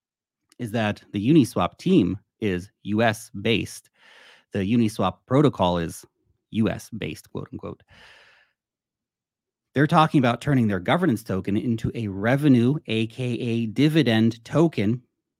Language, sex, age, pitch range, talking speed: English, male, 30-49, 110-155 Hz, 115 wpm